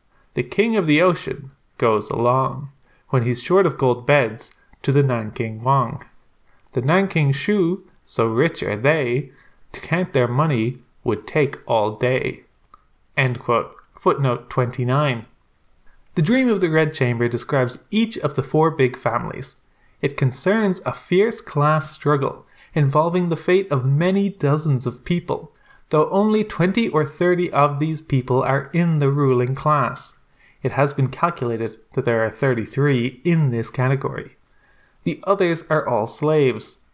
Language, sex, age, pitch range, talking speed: English, male, 20-39, 125-170 Hz, 150 wpm